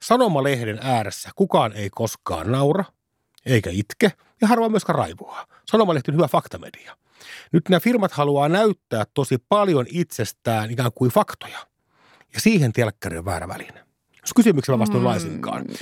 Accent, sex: native, male